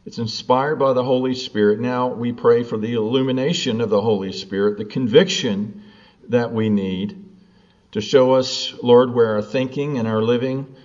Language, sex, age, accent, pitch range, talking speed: English, male, 50-69, American, 115-155 Hz, 170 wpm